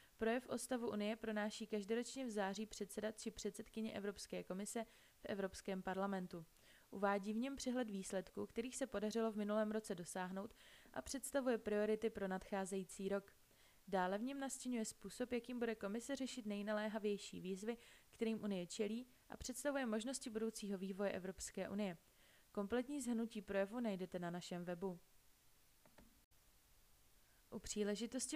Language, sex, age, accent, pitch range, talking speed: Czech, female, 20-39, native, 200-240 Hz, 135 wpm